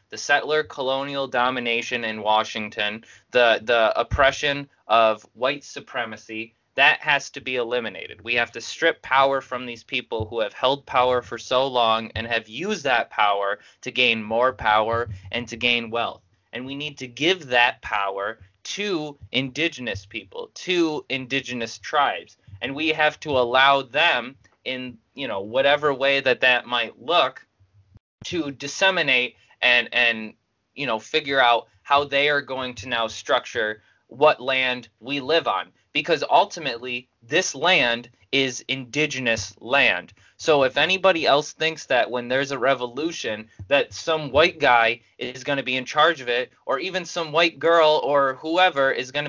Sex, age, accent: male, 20-39, American